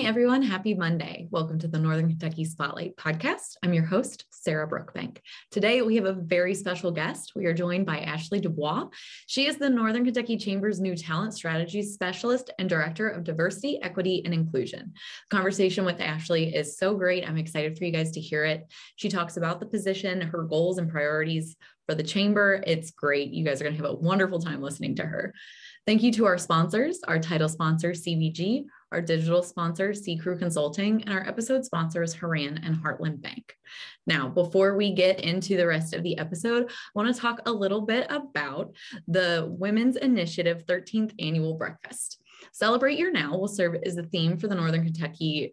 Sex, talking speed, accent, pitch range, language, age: female, 190 wpm, American, 160-210 Hz, English, 20-39